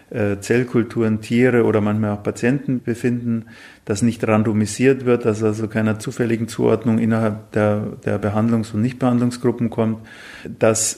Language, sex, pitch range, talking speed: German, male, 110-125 Hz, 130 wpm